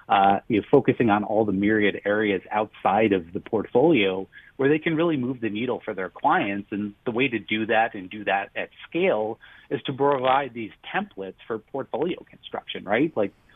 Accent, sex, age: American, male, 30-49